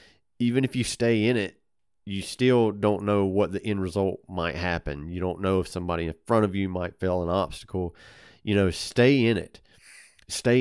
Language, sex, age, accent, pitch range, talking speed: English, male, 30-49, American, 85-105 Hz, 200 wpm